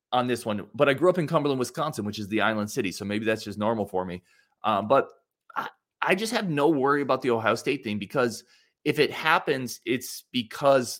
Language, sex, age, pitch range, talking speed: English, male, 30-49, 105-130 Hz, 225 wpm